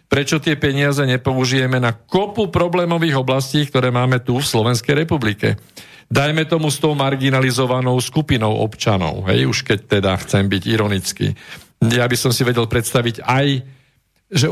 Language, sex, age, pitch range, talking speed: Slovak, male, 50-69, 115-145 Hz, 150 wpm